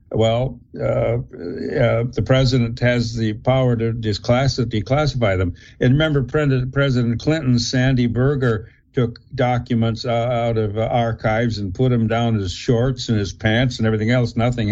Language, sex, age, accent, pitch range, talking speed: English, male, 60-79, American, 110-130 Hz, 150 wpm